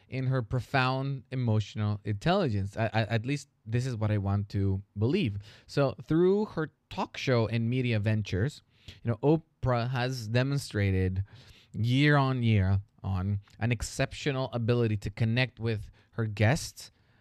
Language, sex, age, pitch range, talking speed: English, male, 20-39, 110-135 Hz, 145 wpm